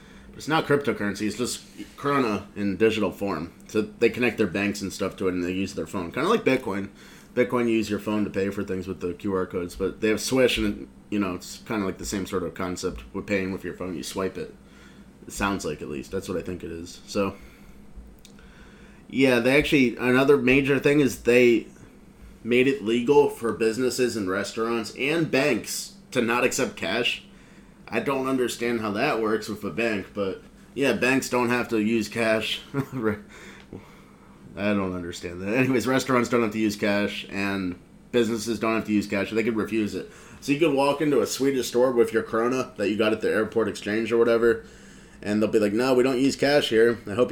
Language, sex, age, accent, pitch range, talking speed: English, male, 30-49, American, 100-125 Hz, 215 wpm